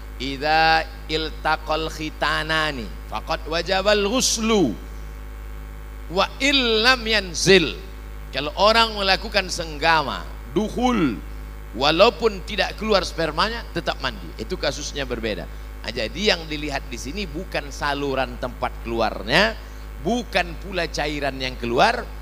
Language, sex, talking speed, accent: Indonesian, male, 95 wpm, native